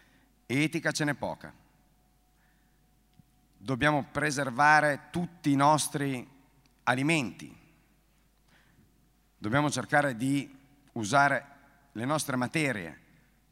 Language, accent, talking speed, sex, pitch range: Italian, native, 75 wpm, male, 115-145 Hz